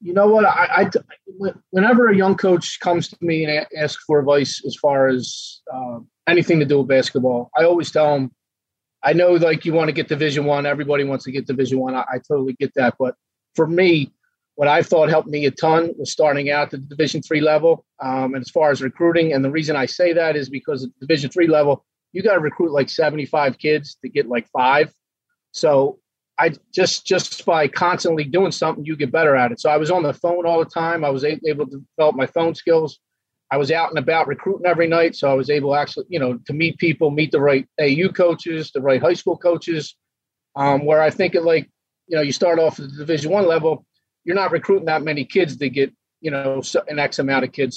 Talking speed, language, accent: 230 wpm, English, American